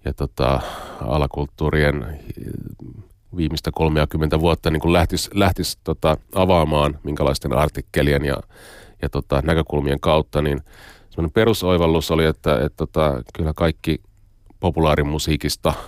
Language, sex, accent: Finnish, male, native